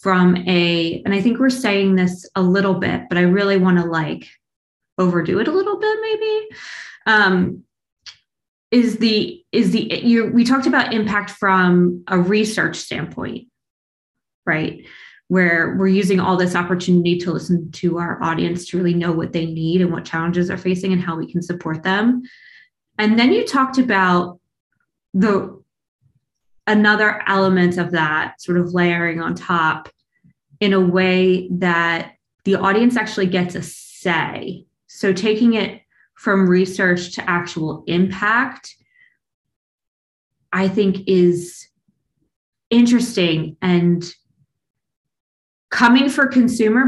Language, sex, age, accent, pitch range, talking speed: English, female, 20-39, American, 175-210 Hz, 135 wpm